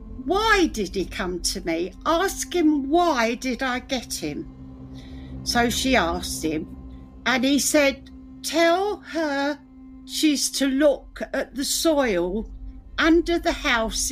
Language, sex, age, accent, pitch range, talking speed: English, female, 60-79, British, 170-285 Hz, 130 wpm